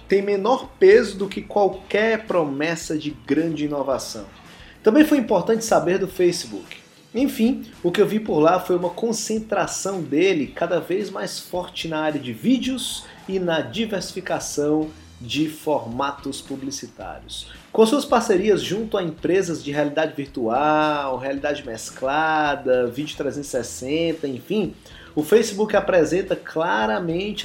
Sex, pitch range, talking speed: male, 150-215 Hz, 130 wpm